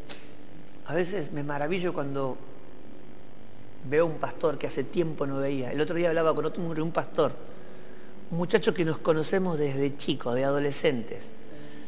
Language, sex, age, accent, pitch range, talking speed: Spanish, male, 50-69, Argentinian, 140-195 Hz, 155 wpm